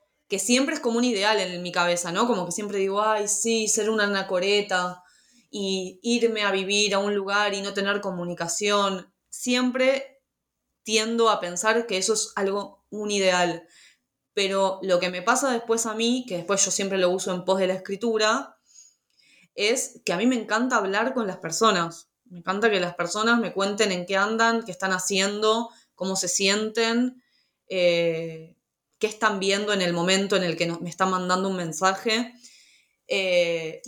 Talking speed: 180 wpm